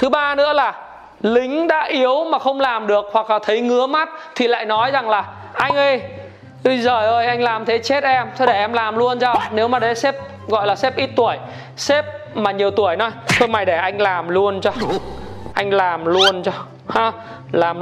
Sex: male